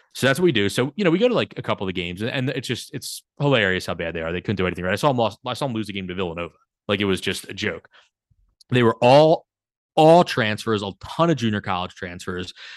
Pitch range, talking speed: 95-125 Hz, 285 wpm